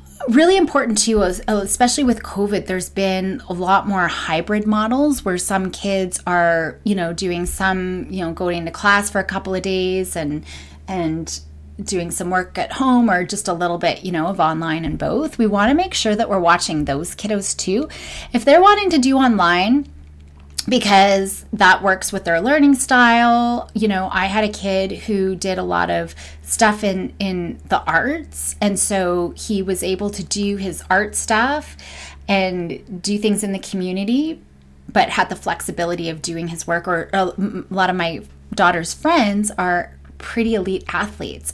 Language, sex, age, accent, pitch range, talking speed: English, female, 30-49, American, 175-215 Hz, 180 wpm